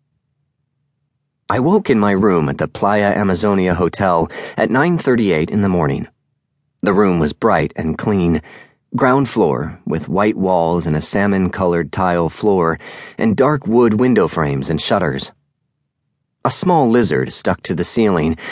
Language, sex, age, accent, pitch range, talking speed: English, male, 30-49, American, 85-125 Hz, 150 wpm